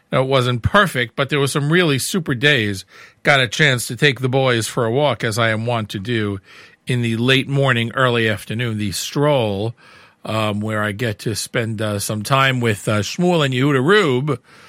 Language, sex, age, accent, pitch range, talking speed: English, male, 50-69, American, 115-160 Hz, 200 wpm